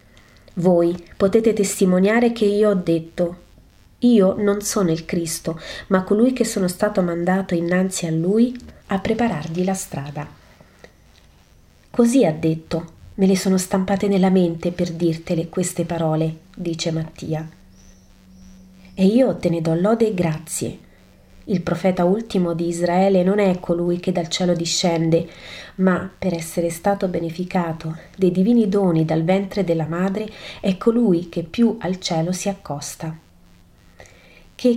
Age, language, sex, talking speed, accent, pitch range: 30-49, Italian, female, 140 wpm, native, 165-200 Hz